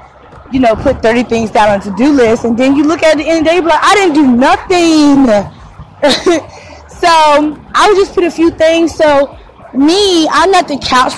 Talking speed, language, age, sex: 215 wpm, English, 20-39, female